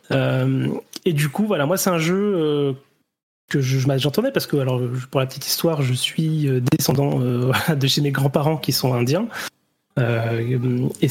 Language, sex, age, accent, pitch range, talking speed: French, male, 30-49, French, 130-170 Hz, 150 wpm